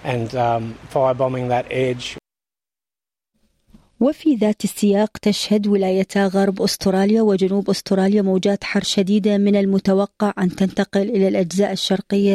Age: 40-59